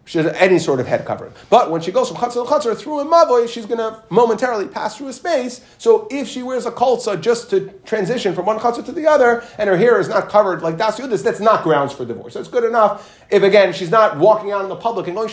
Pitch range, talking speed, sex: 150-210 Hz, 280 wpm, male